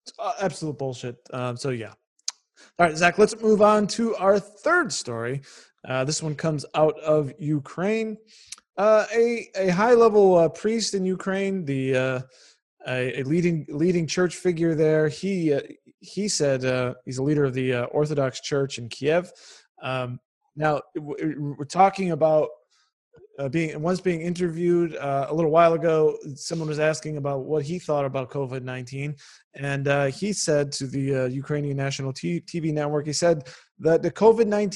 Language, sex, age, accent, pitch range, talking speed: English, male, 20-39, American, 140-200 Hz, 165 wpm